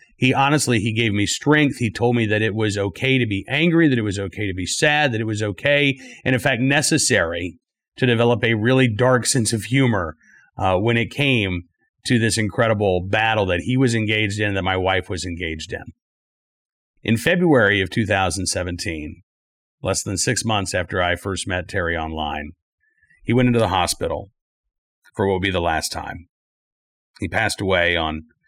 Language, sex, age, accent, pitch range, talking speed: English, male, 40-59, American, 90-120 Hz, 185 wpm